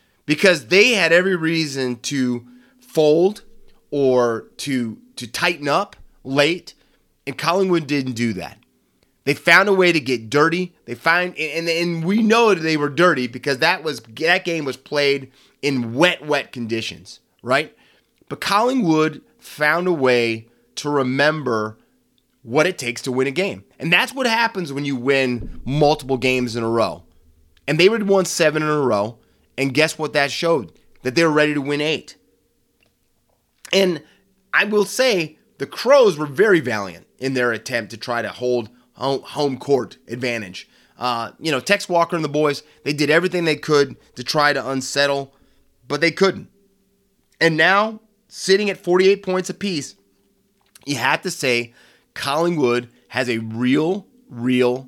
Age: 30-49